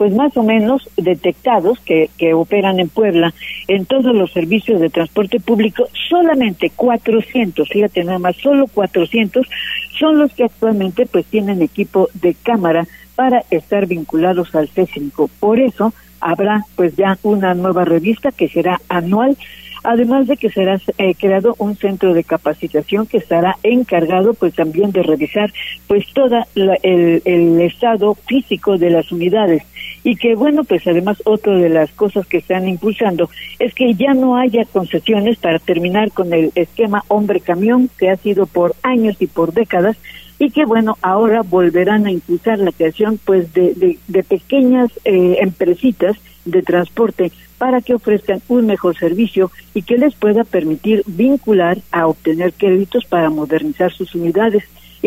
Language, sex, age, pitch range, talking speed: Spanish, female, 50-69, 175-230 Hz, 160 wpm